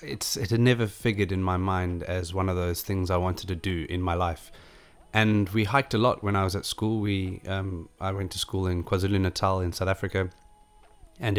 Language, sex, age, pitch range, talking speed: English, male, 20-39, 95-110 Hz, 225 wpm